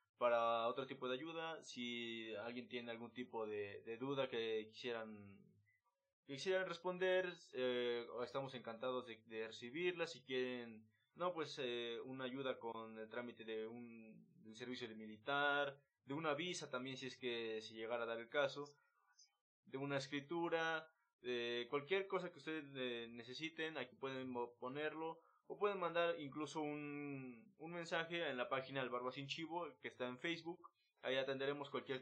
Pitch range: 120-160 Hz